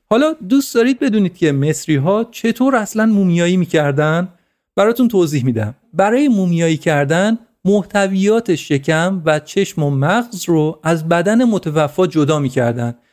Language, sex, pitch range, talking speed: Persian, male, 155-215 Hz, 130 wpm